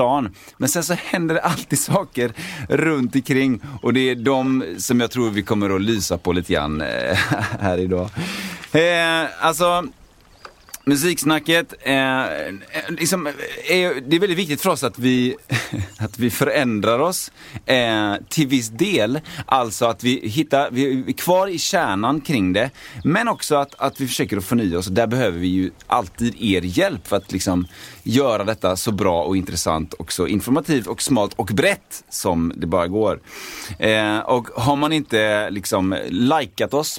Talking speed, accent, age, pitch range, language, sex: 160 wpm, native, 30-49, 100-145 Hz, Swedish, male